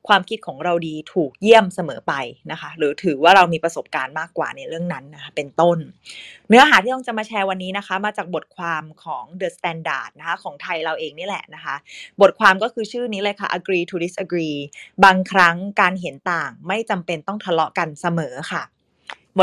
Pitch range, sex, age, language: 170-230 Hz, female, 20-39, Thai